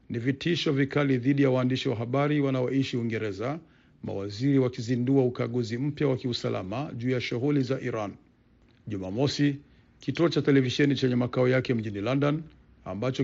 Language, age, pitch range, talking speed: Swahili, 50-69, 120-140 Hz, 140 wpm